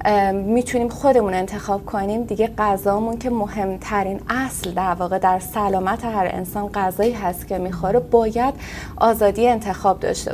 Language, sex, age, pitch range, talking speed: Persian, female, 30-49, 190-240 Hz, 135 wpm